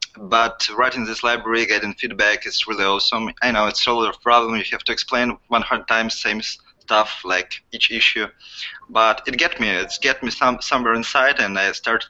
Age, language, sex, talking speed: 20-39, English, male, 210 wpm